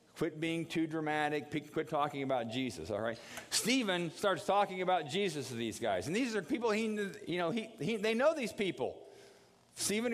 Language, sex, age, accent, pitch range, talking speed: English, male, 50-69, American, 125-200 Hz, 190 wpm